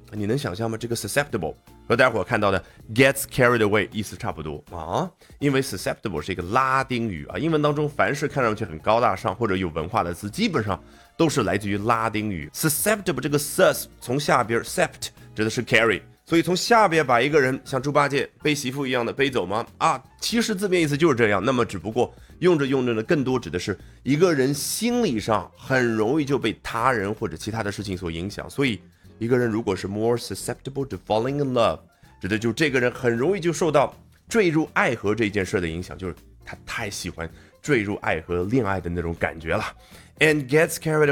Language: Chinese